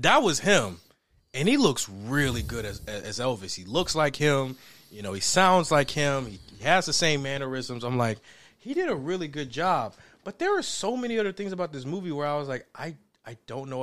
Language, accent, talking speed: English, American, 230 wpm